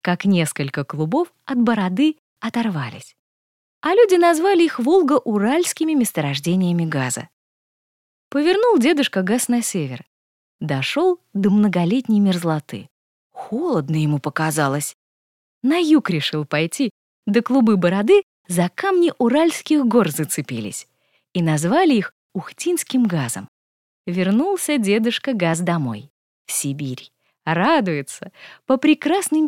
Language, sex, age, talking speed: Russian, female, 20-39, 105 wpm